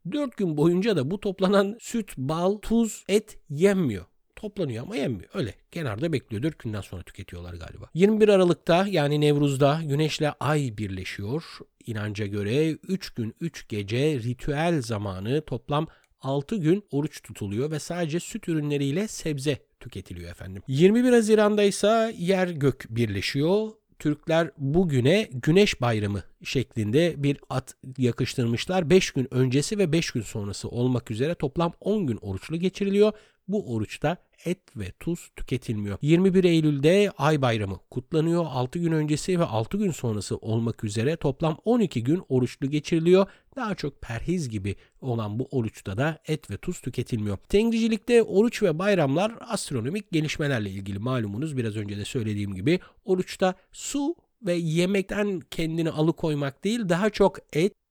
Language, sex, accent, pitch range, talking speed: Turkish, male, native, 120-185 Hz, 140 wpm